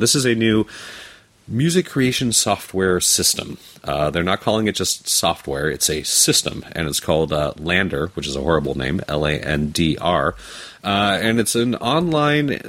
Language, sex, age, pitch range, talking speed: English, male, 30-49, 80-100 Hz, 160 wpm